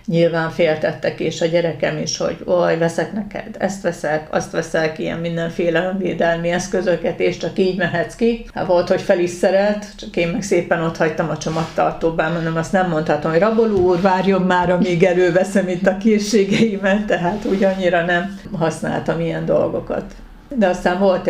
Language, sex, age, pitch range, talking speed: Hungarian, female, 50-69, 165-205 Hz, 165 wpm